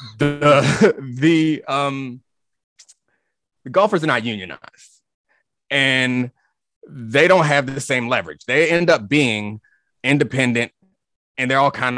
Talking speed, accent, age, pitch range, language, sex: 120 wpm, American, 30-49, 110-140 Hz, English, male